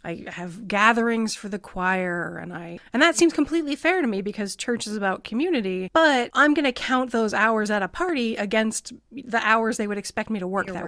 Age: 30-49